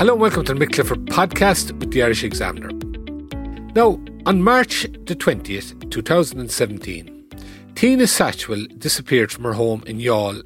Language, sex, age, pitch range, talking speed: English, male, 40-59, 110-165 Hz, 140 wpm